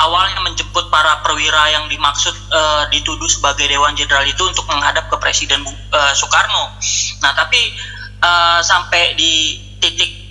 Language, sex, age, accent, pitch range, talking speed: Indonesian, male, 20-39, native, 145-195 Hz, 140 wpm